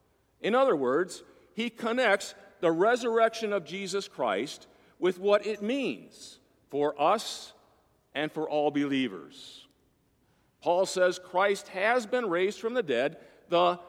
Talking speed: 130 wpm